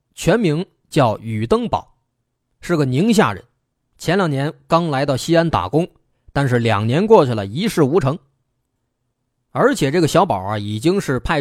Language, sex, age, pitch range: Chinese, male, 20-39, 125-180 Hz